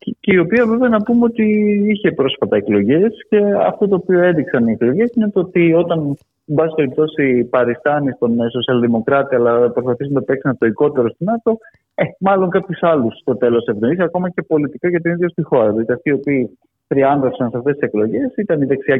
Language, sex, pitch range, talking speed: Greek, male, 120-195 Hz, 195 wpm